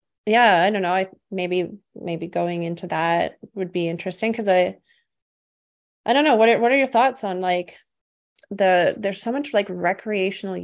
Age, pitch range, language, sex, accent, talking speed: 20-39, 165-190 Hz, English, female, American, 180 wpm